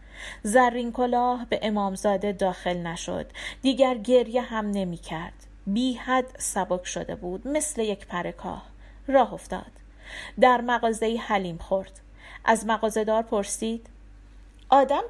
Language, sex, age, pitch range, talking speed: Persian, female, 40-59, 200-265 Hz, 115 wpm